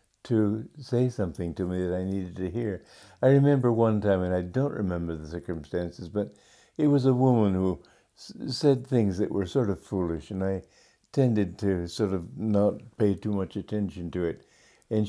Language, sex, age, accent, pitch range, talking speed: English, male, 60-79, American, 95-125 Hz, 185 wpm